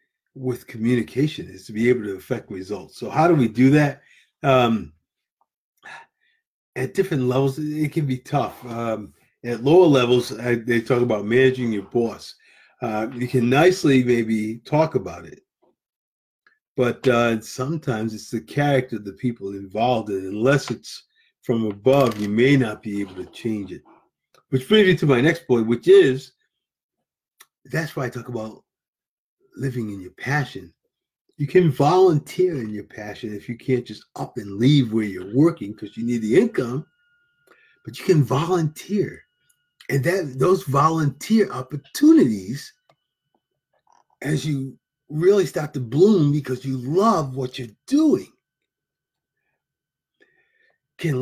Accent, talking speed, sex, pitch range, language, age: American, 145 wpm, male, 115-160 Hz, English, 40-59